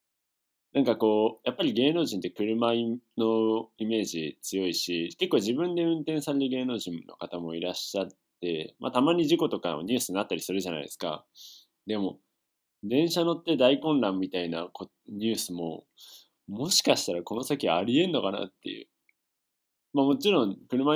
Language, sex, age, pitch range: Japanese, male, 20-39, 95-150 Hz